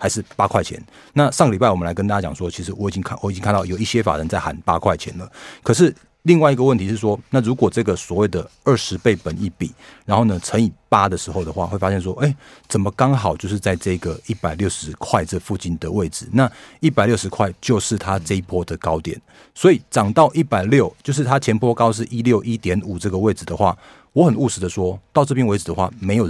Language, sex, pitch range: Chinese, male, 90-120 Hz